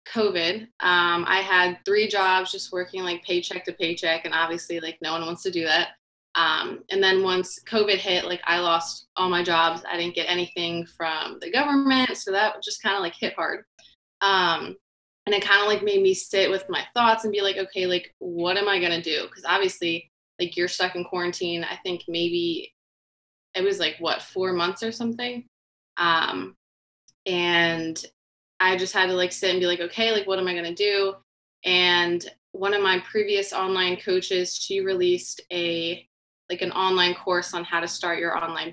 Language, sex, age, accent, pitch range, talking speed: English, female, 20-39, American, 175-200 Hz, 195 wpm